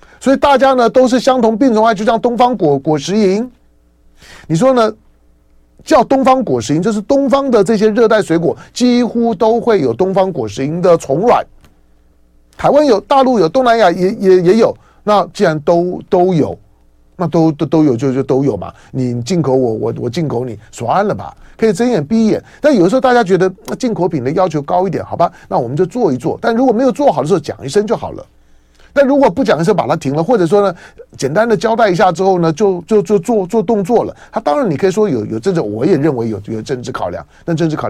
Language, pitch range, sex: Chinese, 135-225 Hz, male